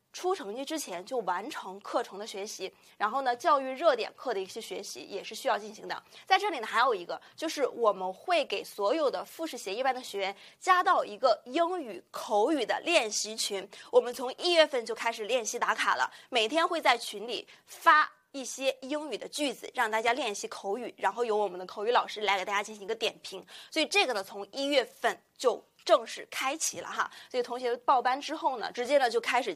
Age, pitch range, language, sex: 20-39, 215-315 Hz, Chinese, female